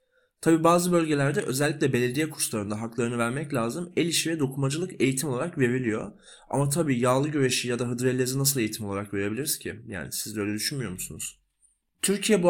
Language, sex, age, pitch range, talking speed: Turkish, male, 30-49, 120-170 Hz, 175 wpm